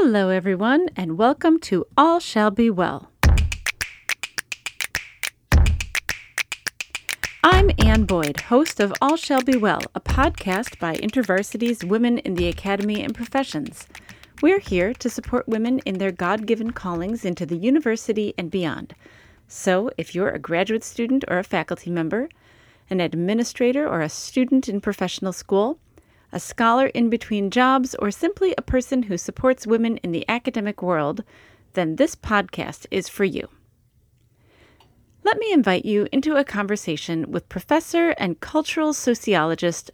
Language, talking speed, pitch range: English, 140 wpm, 175-255 Hz